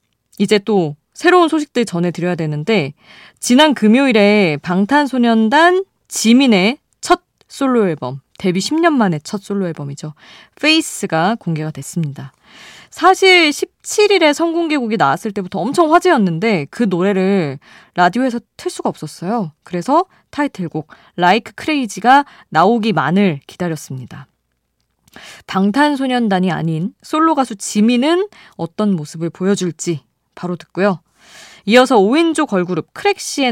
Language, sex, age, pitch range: Korean, female, 20-39, 170-265 Hz